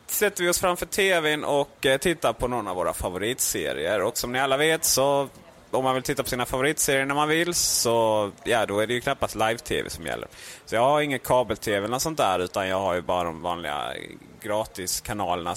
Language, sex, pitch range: Swedish, male, 105-145 Hz